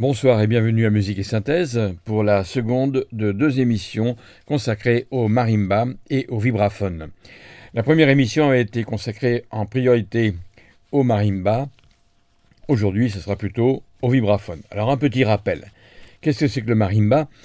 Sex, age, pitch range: male, 50-69, 105-130 Hz